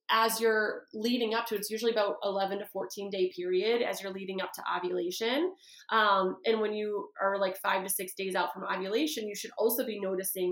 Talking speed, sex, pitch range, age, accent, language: 210 wpm, female, 195-245 Hz, 20-39, American, English